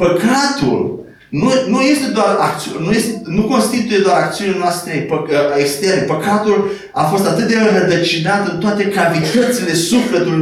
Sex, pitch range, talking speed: male, 165-220 Hz, 140 wpm